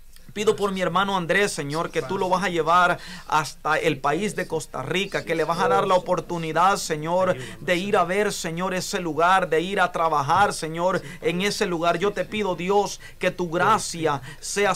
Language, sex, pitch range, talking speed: Spanish, male, 165-200 Hz, 200 wpm